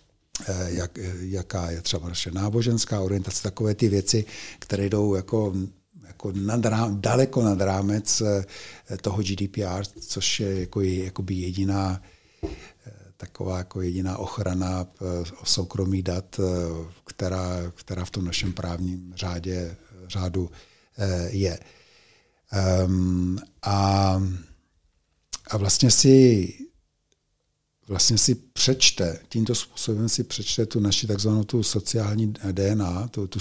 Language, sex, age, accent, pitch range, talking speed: Czech, male, 60-79, native, 90-105 Hz, 110 wpm